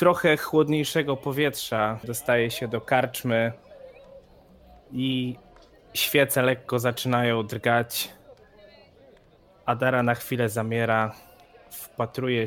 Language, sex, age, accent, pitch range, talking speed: Polish, male, 20-39, native, 105-140 Hz, 80 wpm